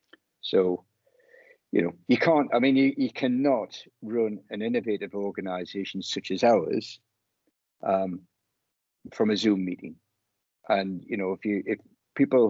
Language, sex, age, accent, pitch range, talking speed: English, male, 50-69, British, 95-110 Hz, 140 wpm